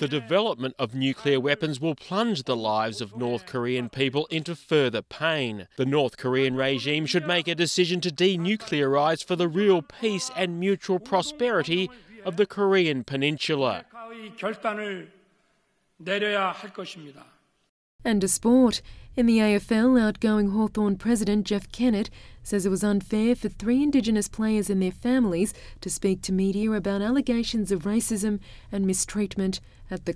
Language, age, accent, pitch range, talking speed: English, 30-49, Australian, 180-220 Hz, 140 wpm